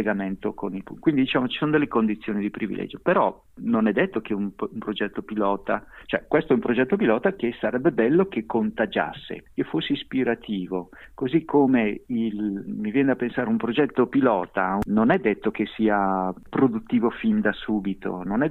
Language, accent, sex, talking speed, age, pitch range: Italian, native, male, 175 wpm, 50-69, 105-140 Hz